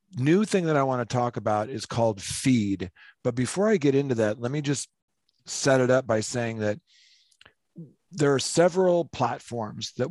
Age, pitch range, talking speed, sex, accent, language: 40-59, 105-125 Hz, 185 wpm, male, American, English